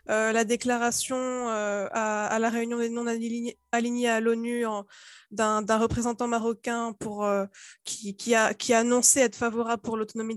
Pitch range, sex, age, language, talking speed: 220-260 Hz, female, 20-39, French, 185 wpm